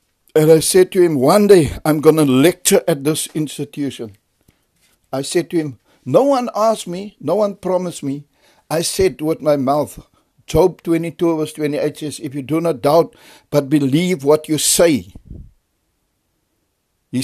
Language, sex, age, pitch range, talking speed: English, male, 60-79, 135-170 Hz, 165 wpm